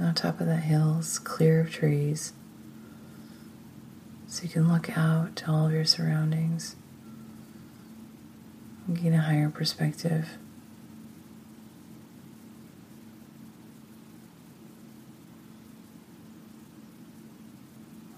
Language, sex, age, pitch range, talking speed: English, female, 40-59, 160-170 Hz, 80 wpm